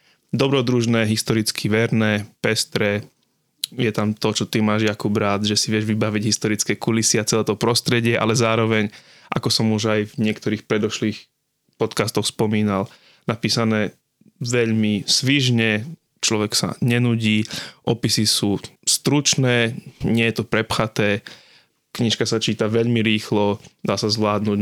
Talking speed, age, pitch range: 130 wpm, 20-39, 105-120 Hz